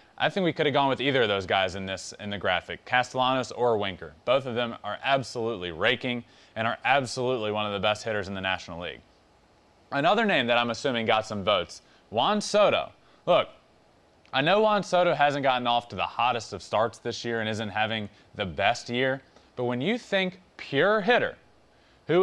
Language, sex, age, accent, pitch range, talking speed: English, male, 20-39, American, 110-155 Hz, 200 wpm